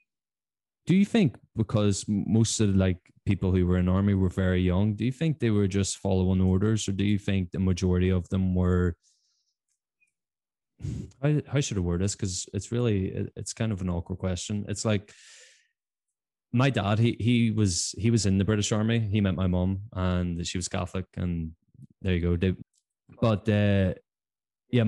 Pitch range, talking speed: 90-110 Hz, 190 wpm